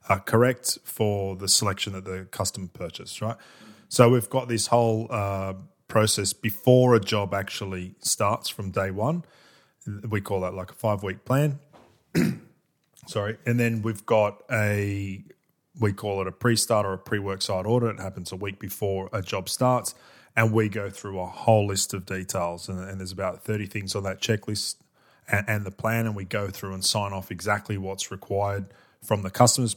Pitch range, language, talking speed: 100-115 Hz, English, 185 wpm